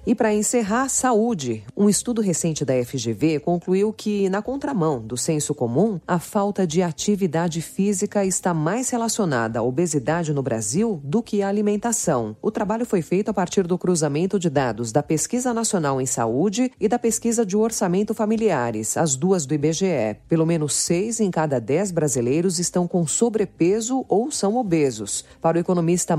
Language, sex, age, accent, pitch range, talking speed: Portuguese, female, 40-59, Brazilian, 140-205 Hz, 165 wpm